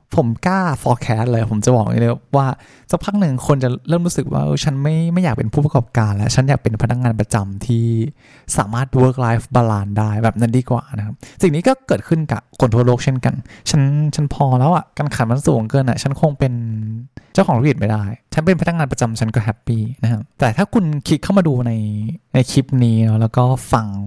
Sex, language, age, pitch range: male, Thai, 20-39, 115-145 Hz